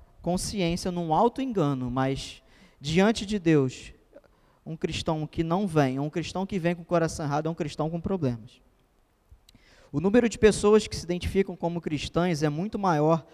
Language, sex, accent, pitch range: Portuguese, male, Brazilian, 150-205 Hz